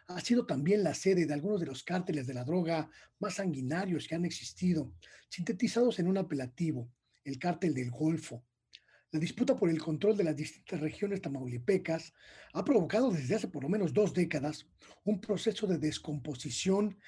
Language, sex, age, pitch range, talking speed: Spanish, male, 40-59, 145-185 Hz, 170 wpm